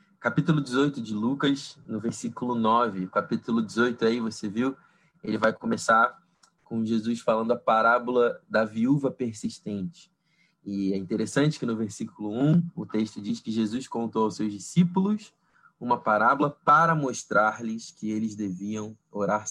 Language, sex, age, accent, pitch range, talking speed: Portuguese, male, 20-39, Brazilian, 105-140 Hz, 145 wpm